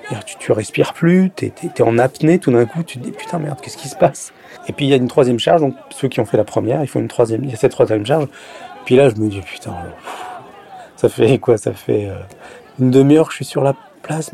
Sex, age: male, 40-59